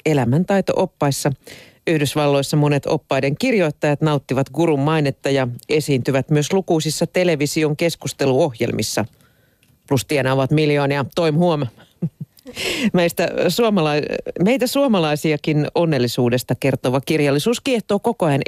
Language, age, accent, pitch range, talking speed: Finnish, 40-59, native, 130-170 Hz, 90 wpm